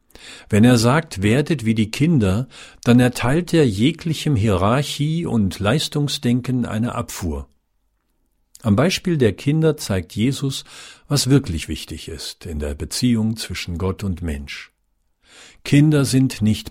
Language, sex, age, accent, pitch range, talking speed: German, male, 50-69, German, 95-125 Hz, 130 wpm